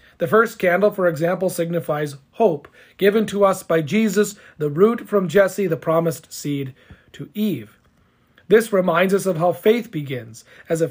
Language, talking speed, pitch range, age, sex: English, 165 wpm, 160-210 Hz, 40-59, male